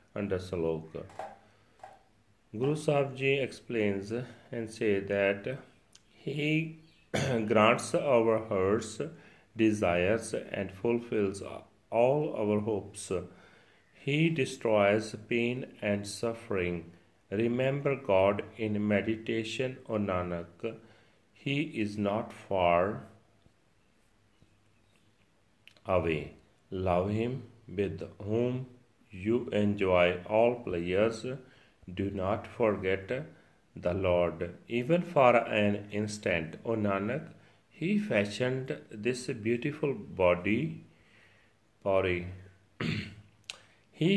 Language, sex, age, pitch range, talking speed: Punjabi, male, 40-59, 100-125 Hz, 85 wpm